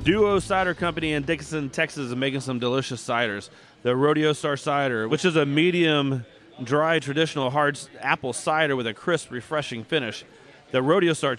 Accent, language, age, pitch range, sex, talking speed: American, English, 30-49, 130-160 Hz, male, 170 wpm